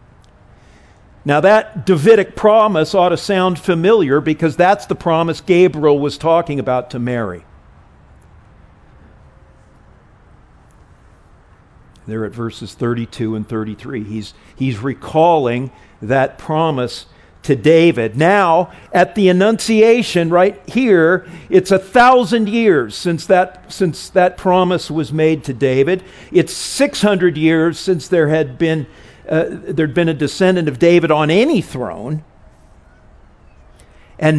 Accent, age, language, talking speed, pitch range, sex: American, 50-69, English, 115 wpm, 125-200 Hz, male